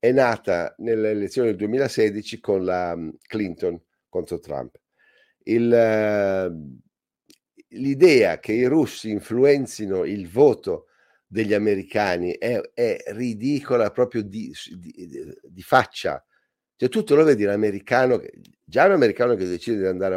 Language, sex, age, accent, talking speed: Italian, male, 50-69, native, 130 wpm